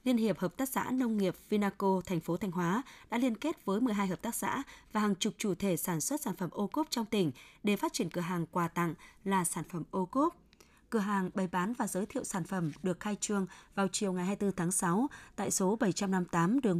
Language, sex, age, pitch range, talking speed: Vietnamese, female, 20-39, 180-225 Hz, 240 wpm